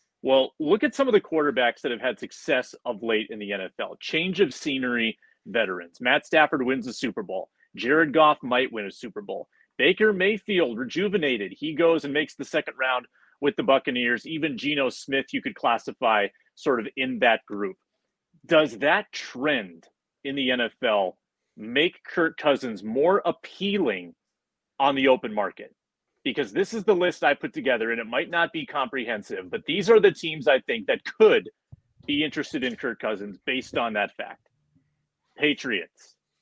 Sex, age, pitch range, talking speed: male, 30-49, 130-190 Hz, 175 wpm